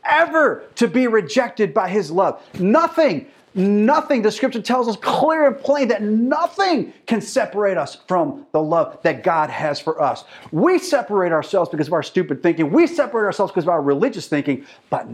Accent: American